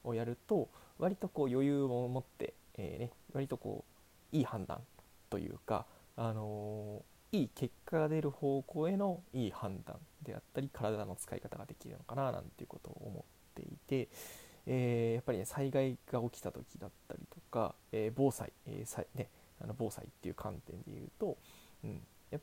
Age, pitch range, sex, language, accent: 20-39, 110-135 Hz, male, Japanese, native